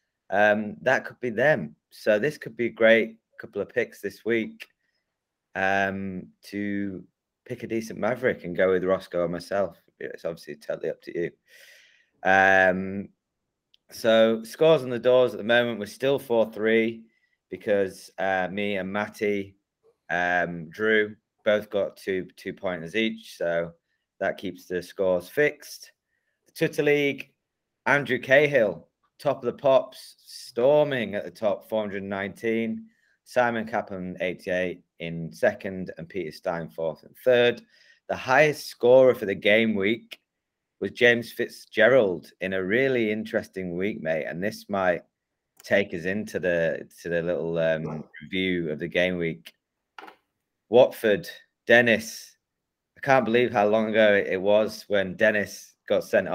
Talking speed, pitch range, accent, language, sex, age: 145 wpm, 95-120 Hz, British, English, male, 20-39